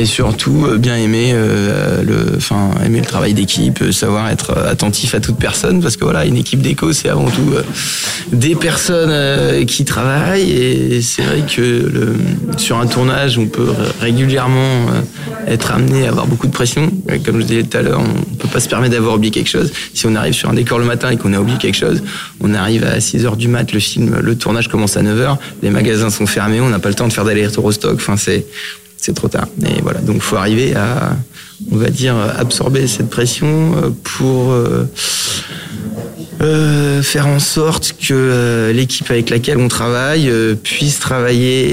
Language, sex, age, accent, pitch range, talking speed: French, male, 20-39, French, 110-140 Hz, 195 wpm